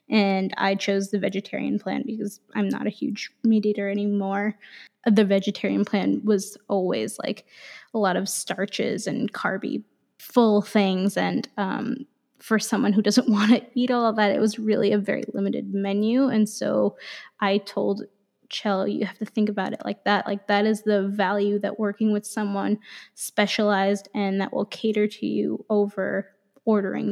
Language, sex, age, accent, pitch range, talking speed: English, female, 10-29, American, 200-230 Hz, 175 wpm